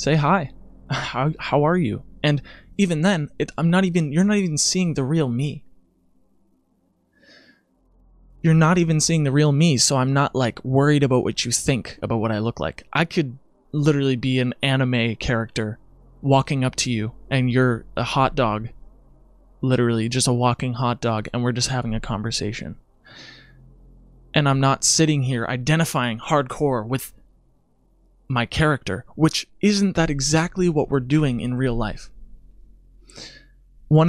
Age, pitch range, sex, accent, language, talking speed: 20-39, 115-150 Hz, male, American, English, 160 wpm